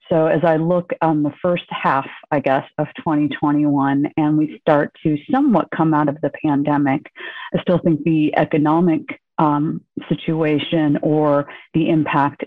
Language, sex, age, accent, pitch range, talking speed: English, female, 30-49, American, 145-165 Hz, 155 wpm